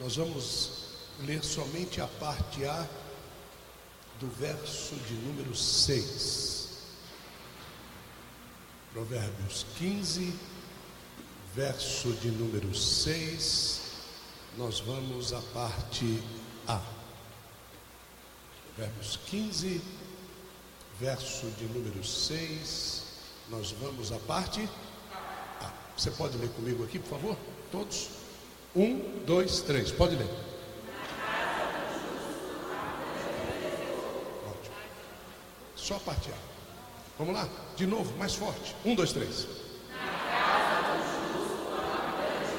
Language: Portuguese